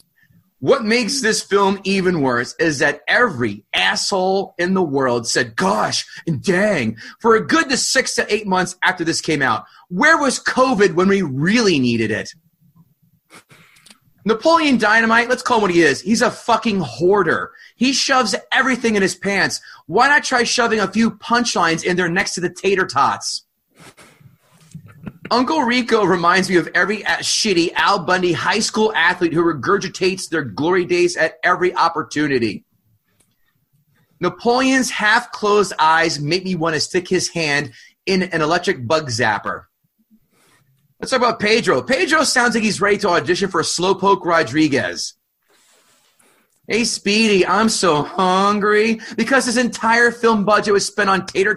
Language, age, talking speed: English, 30-49, 155 wpm